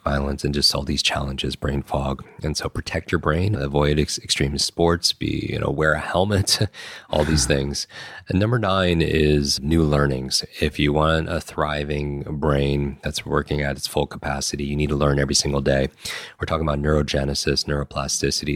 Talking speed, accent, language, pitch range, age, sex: 180 wpm, American, English, 70-85 Hz, 30-49, male